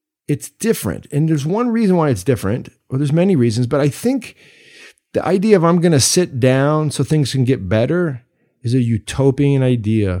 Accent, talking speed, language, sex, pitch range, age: American, 200 wpm, English, male, 100-145 Hz, 40-59